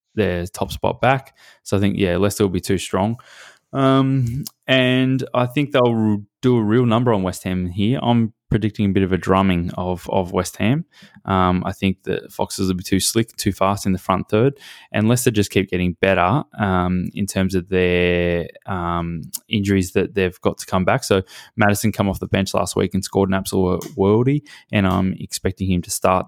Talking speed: 205 wpm